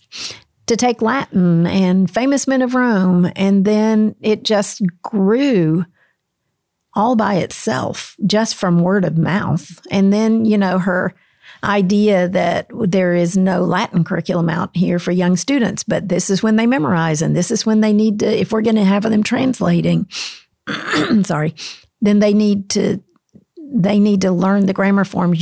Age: 50-69